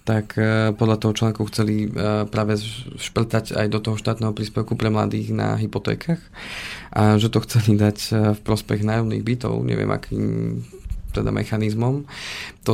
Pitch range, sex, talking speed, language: 105-110 Hz, male, 140 wpm, Slovak